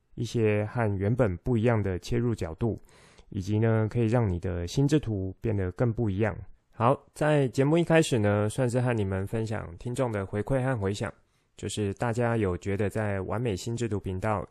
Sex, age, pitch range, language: male, 20-39, 100-120 Hz, Chinese